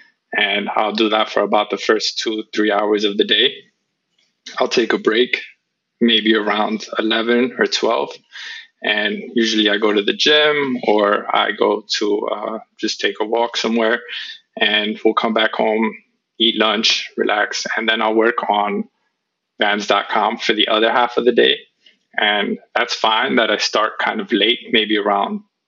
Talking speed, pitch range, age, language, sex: 170 wpm, 105-125 Hz, 20-39, French, male